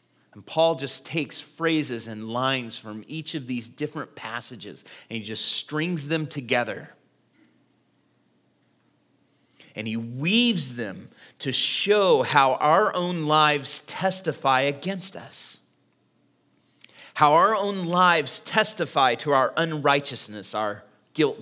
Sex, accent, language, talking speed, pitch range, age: male, American, English, 120 wpm, 120-160 Hz, 30-49